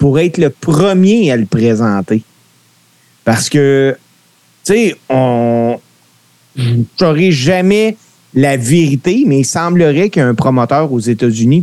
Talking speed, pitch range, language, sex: 145 wpm, 120-165 Hz, French, male